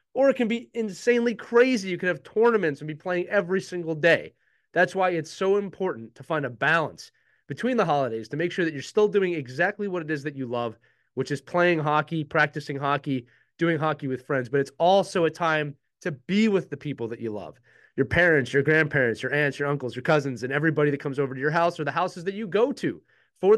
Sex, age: male, 30-49